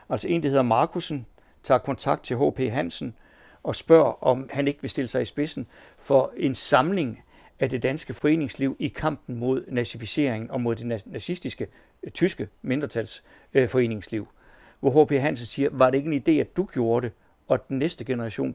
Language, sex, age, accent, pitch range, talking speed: Danish, male, 60-79, native, 120-150 Hz, 175 wpm